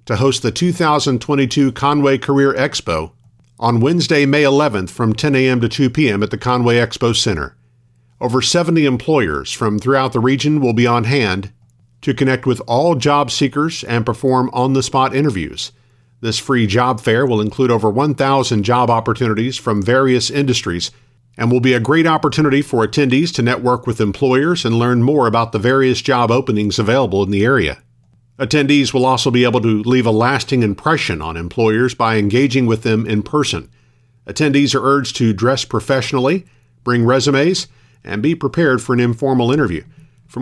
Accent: American